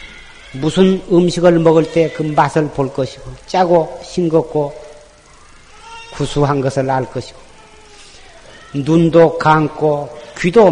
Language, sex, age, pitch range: Korean, male, 40-59, 140-225 Hz